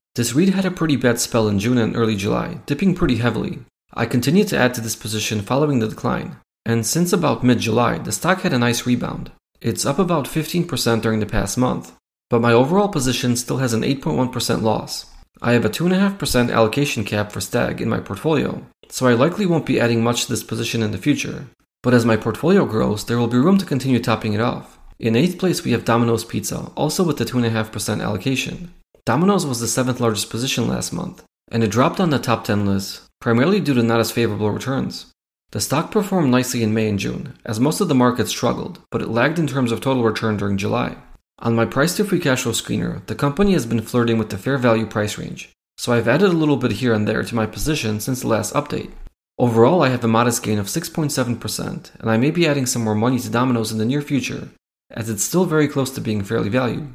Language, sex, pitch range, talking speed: English, male, 115-145 Hz, 225 wpm